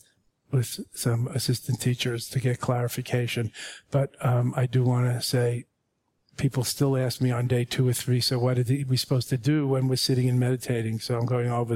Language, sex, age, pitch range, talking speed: English, male, 40-59, 120-135 Hz, 200 wpm